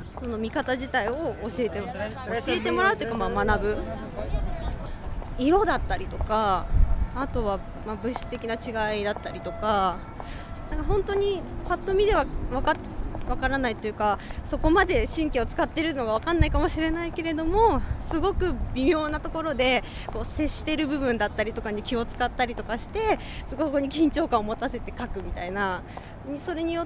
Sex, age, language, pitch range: female, 20-39, Japanese, 230-360 Hz